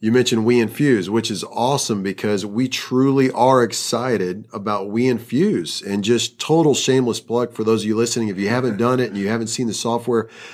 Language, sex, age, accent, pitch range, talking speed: English, male, 40-59, American, 110-125 Hz, 205 wpm